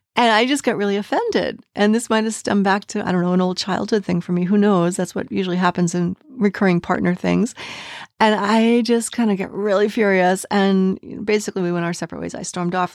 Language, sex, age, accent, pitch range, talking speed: English, female, 30-49, American, 180-215 Hz, 230 wpm